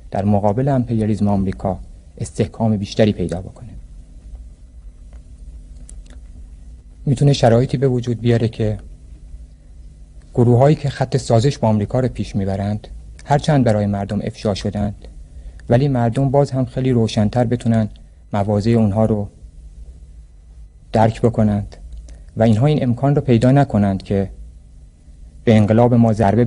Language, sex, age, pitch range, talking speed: Persian, male, 50-69, 85-120 Hz, 120 wpm